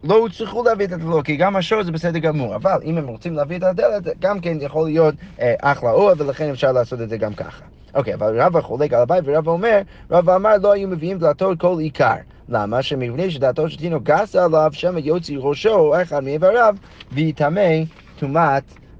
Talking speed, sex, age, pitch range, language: 200 wpm, male, 30-49, 135-180 Hz, Hebrew